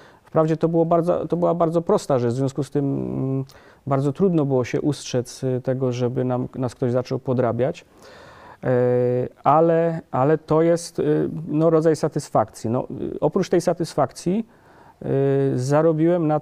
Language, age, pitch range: Polish, 40-59, 125-160 Hz